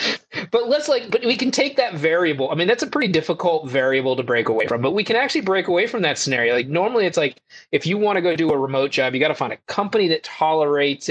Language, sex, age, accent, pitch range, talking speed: English, male, 30-49, American, 130-185 Hz, 270 wpm